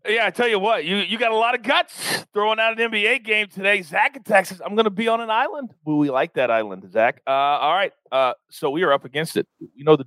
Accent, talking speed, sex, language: American, 280 wpm, male, English